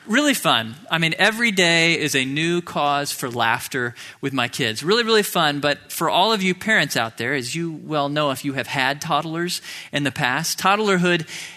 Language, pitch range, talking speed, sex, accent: English, 145-185 Hz, 200 wpm, male, American